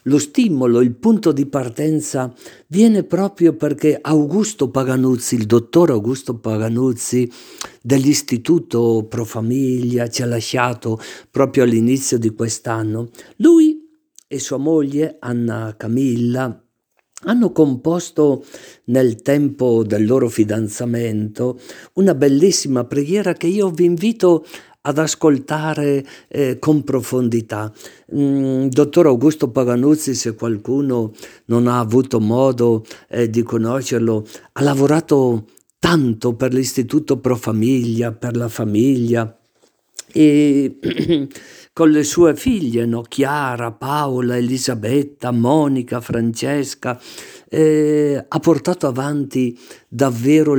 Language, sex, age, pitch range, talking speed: Italian, male, 50-69, 120-150 Hz, 105 wpm